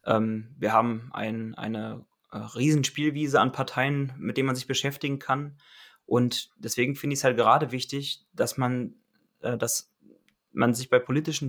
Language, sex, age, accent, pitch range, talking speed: German, male, 20-39, German, 115-135 Hz, 135 wpm